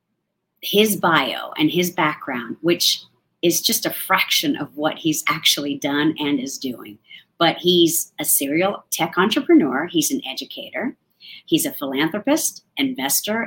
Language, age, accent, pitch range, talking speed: English, 40-59, American, 150-205 Hz, 140 wpm